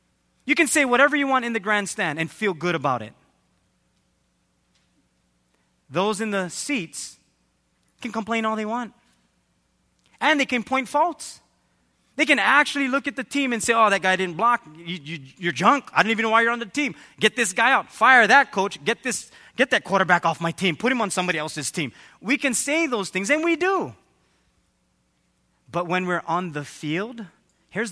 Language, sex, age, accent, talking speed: English, male, 30-49, American, 190 wpm